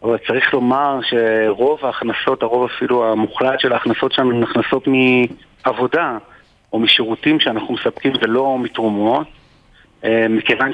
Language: Hebrew